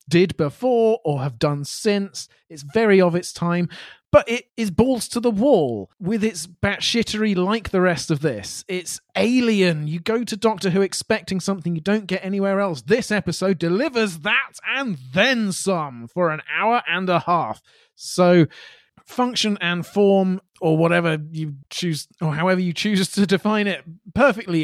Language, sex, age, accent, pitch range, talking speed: English, male, 30-49, British, 160-210 Hz, 170 wpm